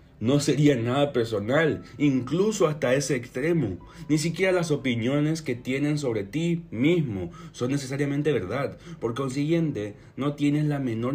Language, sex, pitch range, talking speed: Spanish, male, 115-145 Hz, 140 wpm